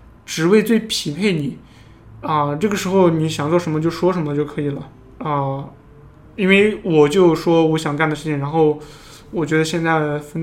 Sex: male